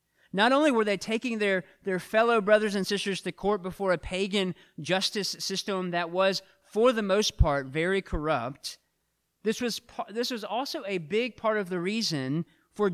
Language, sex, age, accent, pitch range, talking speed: English, male, 40-59, American, 155-205 Hz, 180 wpm